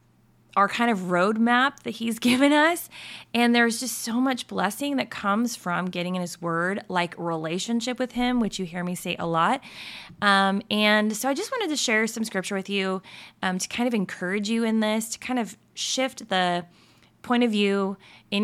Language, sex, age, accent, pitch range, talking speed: English, female, 20-39, American, 180-240 Hz, 200 wpm